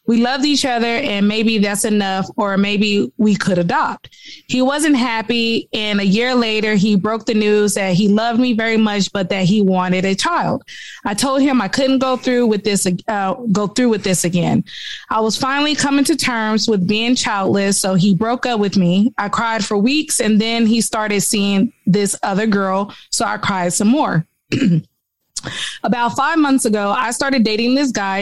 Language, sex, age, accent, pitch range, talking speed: English, female, 20-39, American, 200-245 Hz, 195 wpm